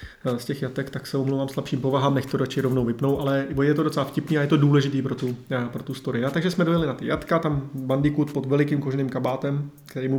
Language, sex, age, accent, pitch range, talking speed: Czech, male, 20-39, native, 130-150 Hz, 255 wpm